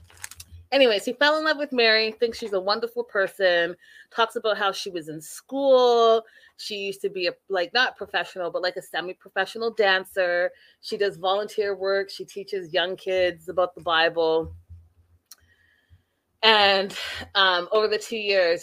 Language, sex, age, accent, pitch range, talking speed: English, female, 30-49, American, 175-230 Hz, 160 wpm